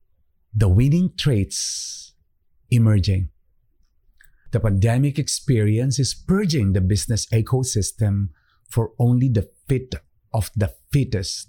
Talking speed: 100 wpm